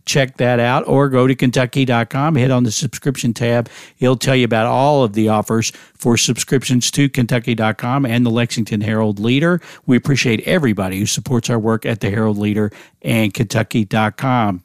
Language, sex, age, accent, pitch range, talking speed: English, male, 50-69, American, 115-140 Hz, 175 wpm